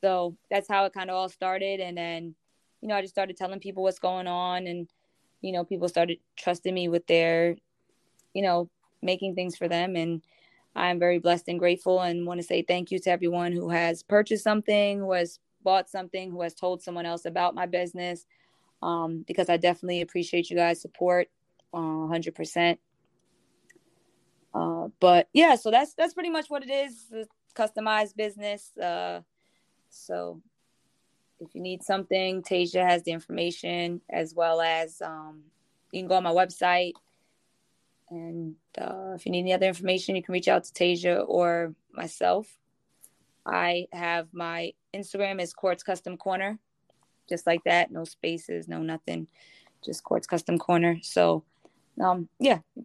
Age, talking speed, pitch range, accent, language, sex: 20-39, 170 wpm, 170-185 Hz, American, English, female